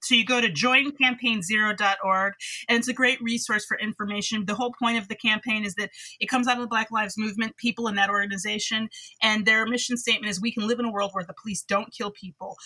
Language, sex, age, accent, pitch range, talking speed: English, female, 30-49, American, 200-240 Hz, 230 wpm